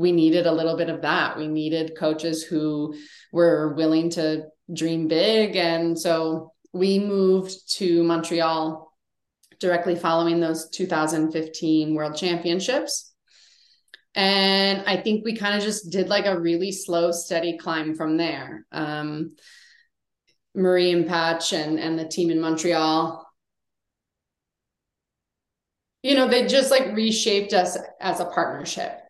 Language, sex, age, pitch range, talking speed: English, female, 20-39, 160-200 Hz, 130 wpm